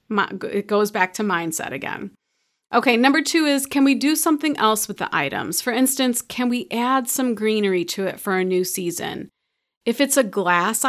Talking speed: 195 wpm